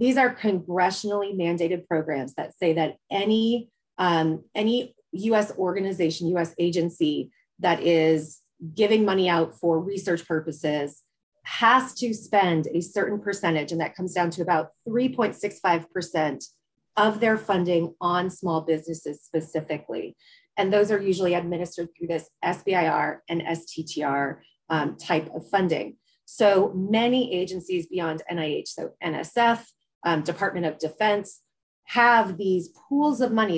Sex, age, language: female, 30-49, English